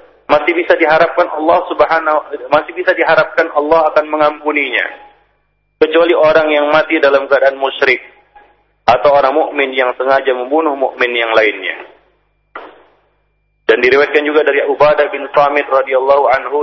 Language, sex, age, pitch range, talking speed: Malay, male, 40-59, 140-165 Hz, 130 wpm